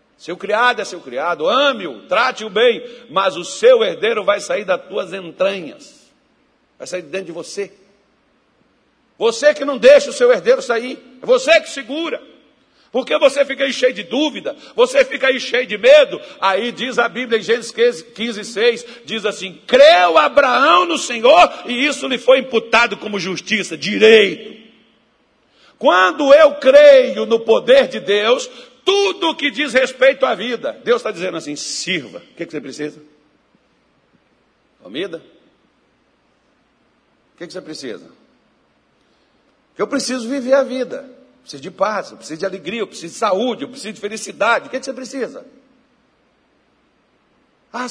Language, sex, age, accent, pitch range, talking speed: Portuguese, male, 60-79, Brazilian, 215-275 Hz, 155 wpm